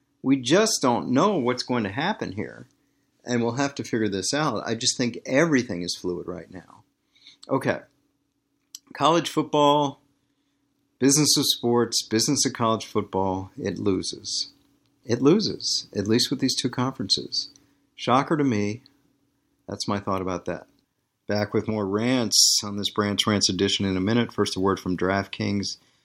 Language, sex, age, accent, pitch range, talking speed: English, male, 50-69, American, 105-140 Hz, 160 wpm